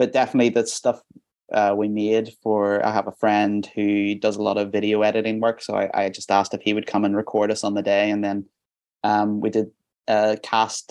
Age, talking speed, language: 20-39, 230 wpm, English